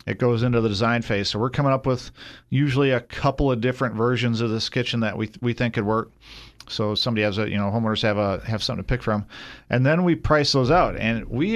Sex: male